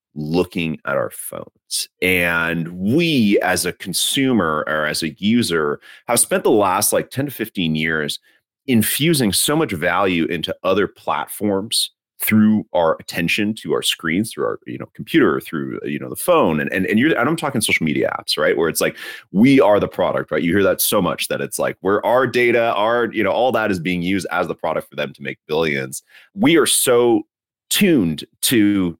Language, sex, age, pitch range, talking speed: English, male, 30-49, 80-110 Hz, 200 wpm